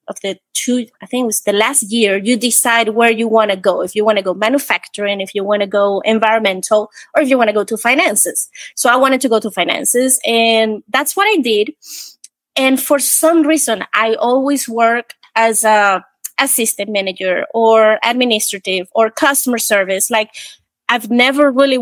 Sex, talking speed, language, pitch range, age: female, 190 wpm, English, 220-280 Hz, 20-39